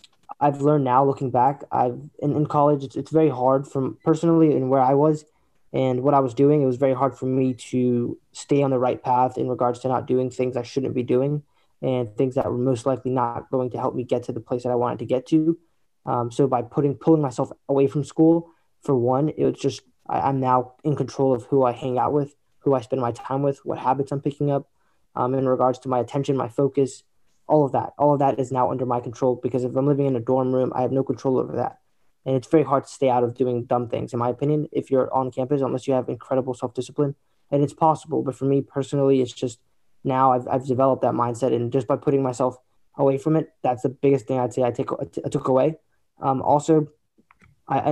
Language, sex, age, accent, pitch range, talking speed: English, male, 20-39, American, 125-140 Hz, 245 wpm